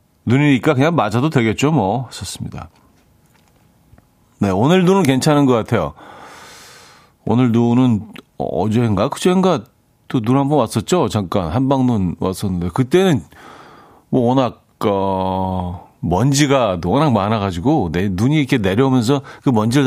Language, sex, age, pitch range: Korean, male, 40-59, 100-140 Hz